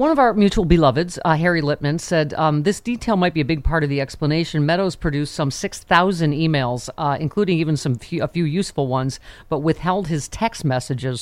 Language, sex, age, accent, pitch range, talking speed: English, female, 40-59, American, 130-170 Hz, 210 wpm